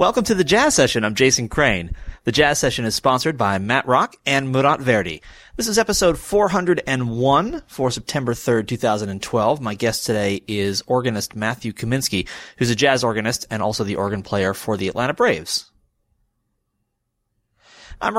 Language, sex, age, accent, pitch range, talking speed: English, male, 30-49, American, 105-135 Hz, 160 wpm